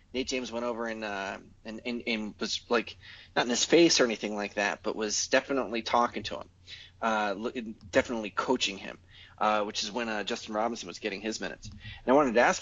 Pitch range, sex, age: 100-125 Hz, male, 30-49